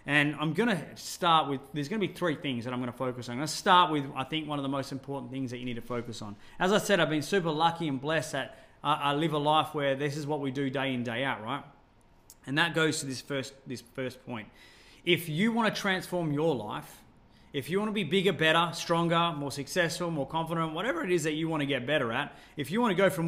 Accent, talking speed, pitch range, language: Australian, 250 wpm, 130-170 Hz, English